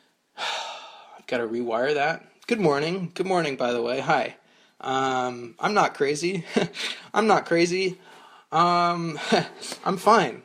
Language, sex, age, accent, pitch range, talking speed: English, male, 20-39, American, 130-195 Hz, 120 wpm